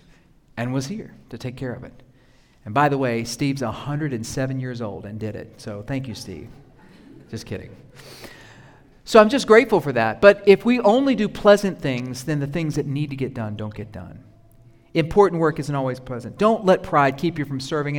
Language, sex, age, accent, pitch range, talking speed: English, male, 40-59, American, 125-165 Hz, 205 wpm